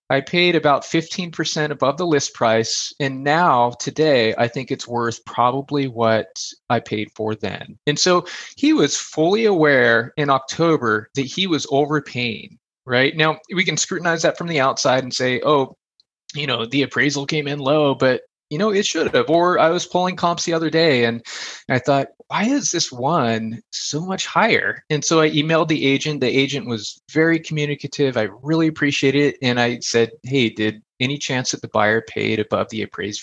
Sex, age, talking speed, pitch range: male, 20-39, 190 wpm, 120-160 Hz